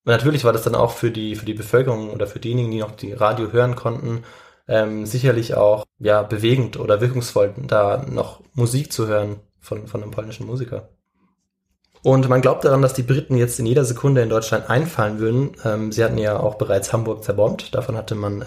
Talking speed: 200 wpm